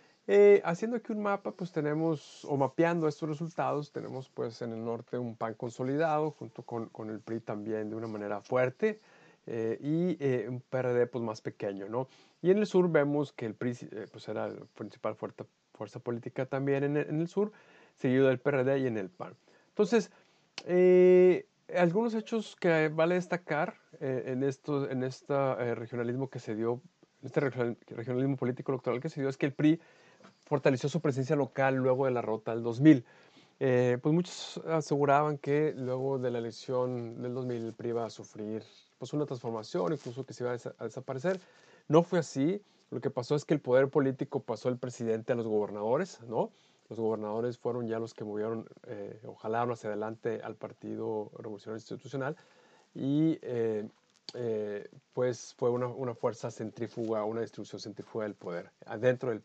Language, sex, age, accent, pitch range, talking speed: Spanish, male, 50-69, Mexican, 115-155 Hz, 185 wpm